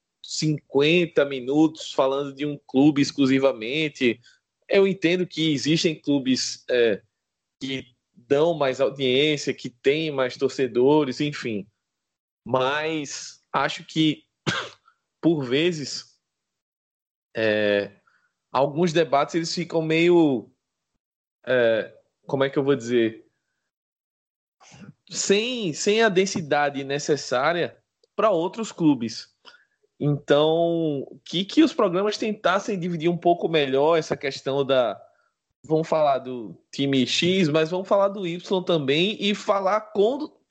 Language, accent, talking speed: Portuguese, Brazilian, 110 wpm